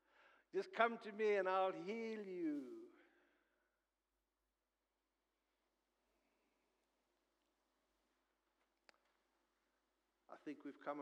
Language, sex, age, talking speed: English, male, 60-79, 65 wpm